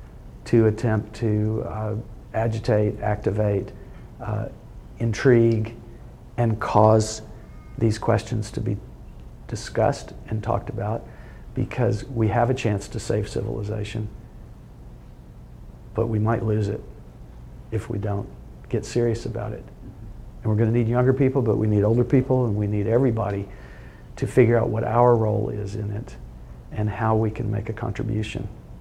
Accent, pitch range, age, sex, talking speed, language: American, 105-120 Hz, 50-69, male, 145 wpm, English